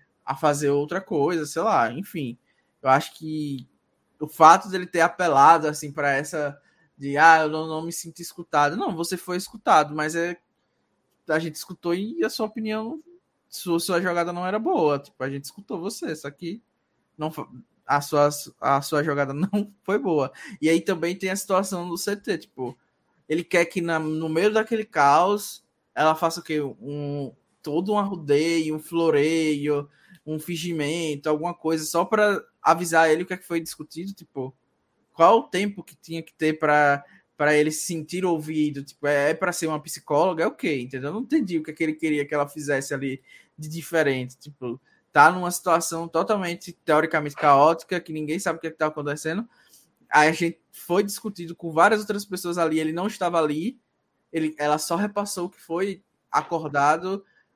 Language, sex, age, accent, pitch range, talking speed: Portuguese, male, 20-39, Brazilian, 150-180 Hz, 185 wpm